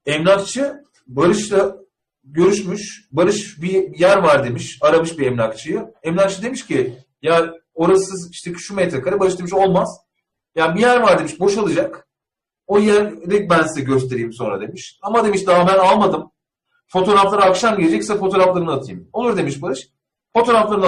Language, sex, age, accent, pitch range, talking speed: Turkish, male, 40-59, native, 165-210 Hz, 145 wpm